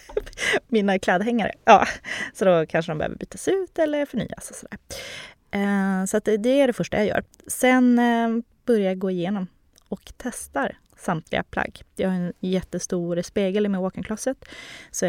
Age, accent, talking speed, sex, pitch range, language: 20-39, native, 150 wpm, female, 175-240 Hz, Swedish